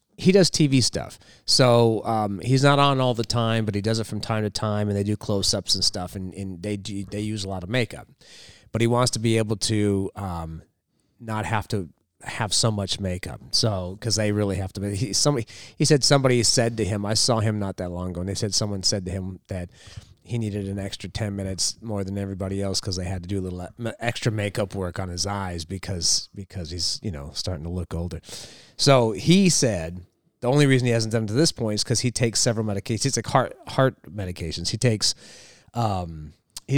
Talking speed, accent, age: 230 wpm, American, 30-49